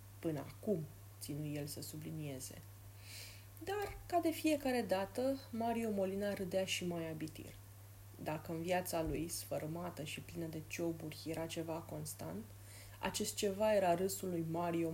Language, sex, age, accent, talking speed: Romanian, female, 30-49, native, 140 wpm